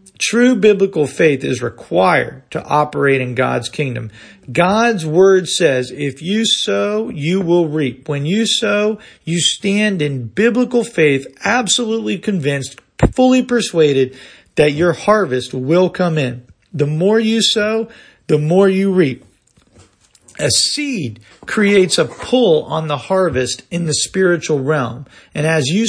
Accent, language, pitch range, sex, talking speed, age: American, English, 150-210 Hz, male, 140 wpm, 40-59